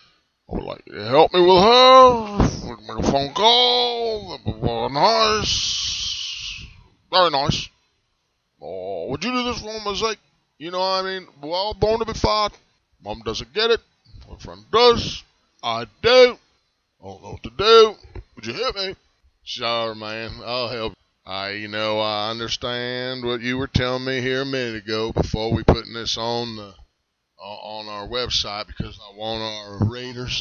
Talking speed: 175 wpm